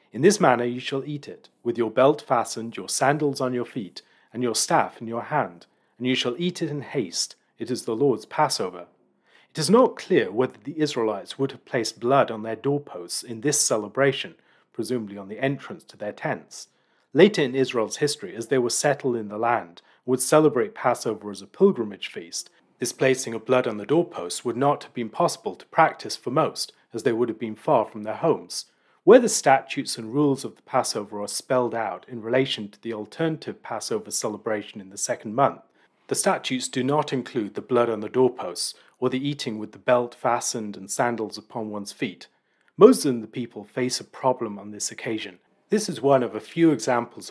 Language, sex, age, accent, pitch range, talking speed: English, male, 40-59, British, 110-140 Hz, 205 wpm